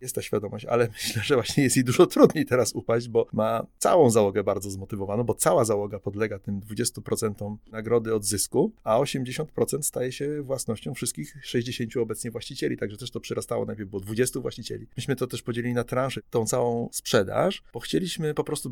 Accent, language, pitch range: native, Polish, 120-150 Hz